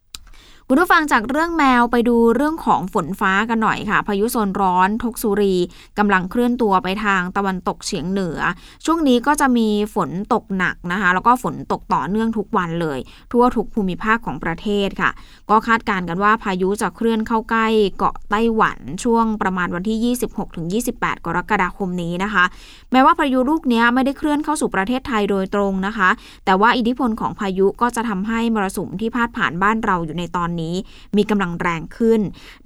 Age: 20-39